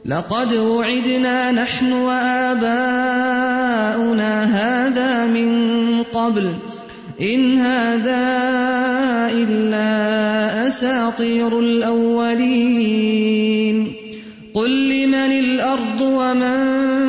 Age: 30-49